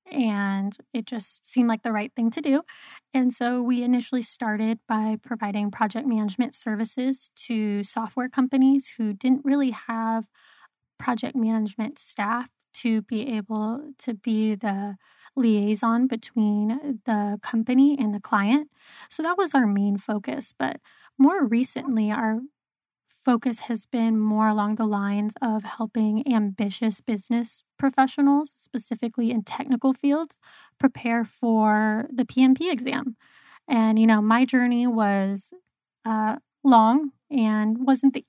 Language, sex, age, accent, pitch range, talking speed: English, female, 20-39, American, 215-255 Hz, 135 wpm